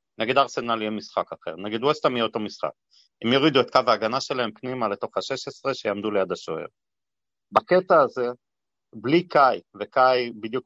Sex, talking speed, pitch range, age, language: male, 165 wpm, 115-145 Hz, 40-59, Hebrew